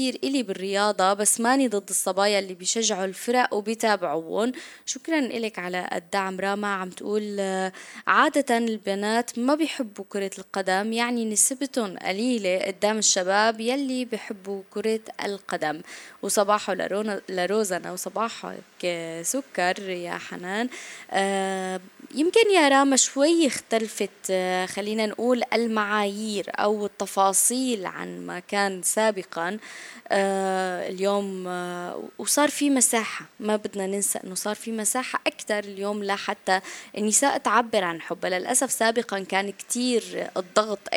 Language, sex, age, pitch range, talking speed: Arabic, female, 20-39, 195-245 Hz, 115 wpm